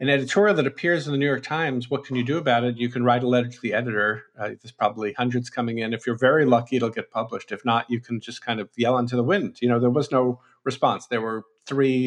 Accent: American